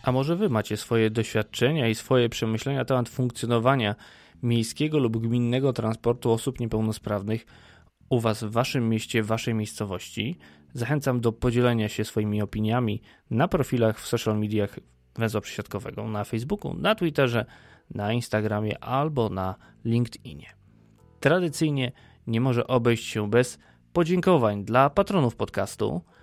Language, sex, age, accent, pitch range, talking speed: Polish, male, 20-39, native, 105-130 Hz, 135 wpm